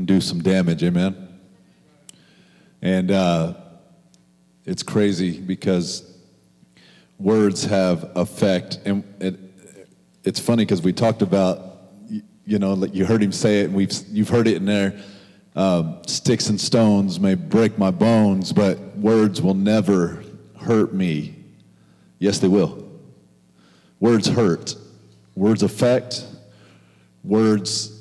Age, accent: 40-59, American